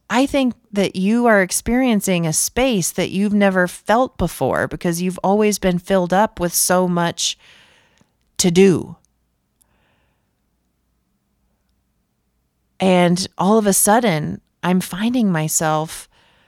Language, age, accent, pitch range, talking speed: English, 30-49, American, 155-225 Hz, 115 wpm